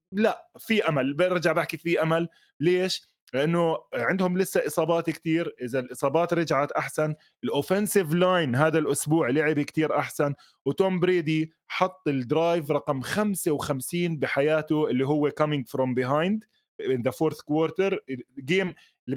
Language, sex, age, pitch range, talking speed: Arabic, male, 20-39, 140-175 Hz, 130 wpm